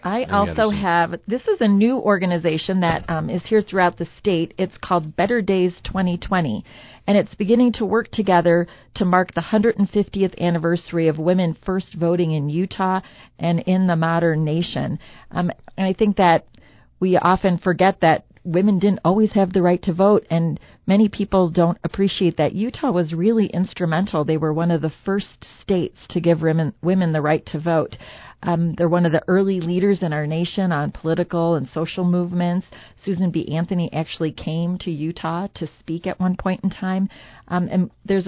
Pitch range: 160-190 Hz